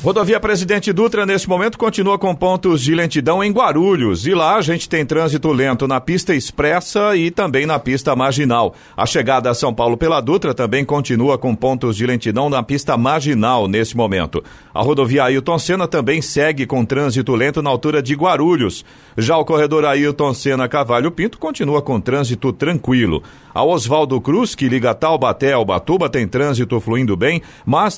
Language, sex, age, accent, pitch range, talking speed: Portuguese, male, 50-69, Brazilian, 125-160 Hz, 175 wpm